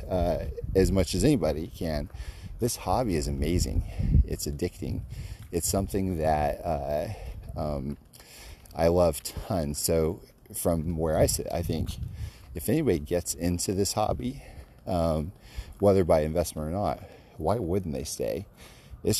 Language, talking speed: English, 140 wpm